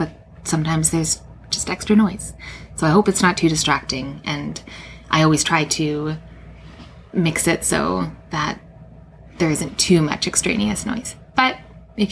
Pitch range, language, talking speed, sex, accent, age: 155-195 Hz, English, 145 wpm, female, American, 20-39